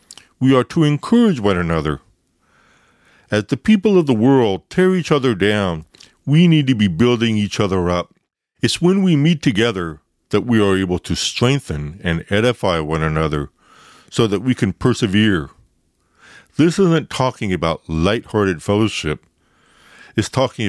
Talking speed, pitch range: 150 wpm, 85-120 Hz